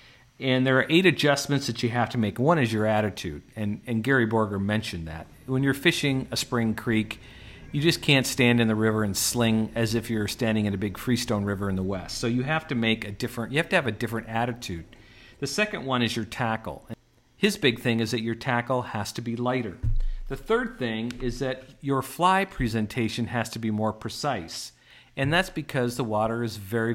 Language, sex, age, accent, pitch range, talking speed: English, male, 50-69, American, 110-135 Hz, 220 wpm